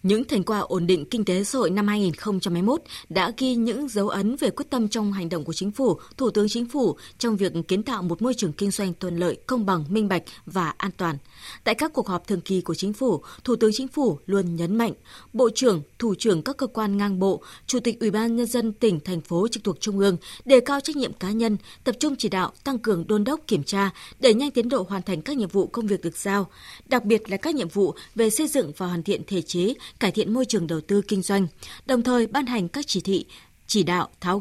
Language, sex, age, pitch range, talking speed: Vietnamese, female, 20-39, 185-240 Hz, 255 wpm